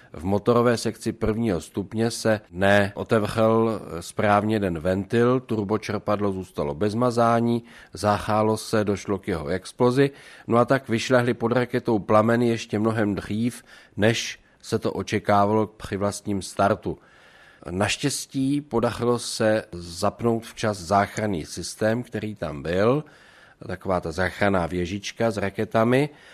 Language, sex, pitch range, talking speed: Czech, male, 95-115 Hz, 120 wpm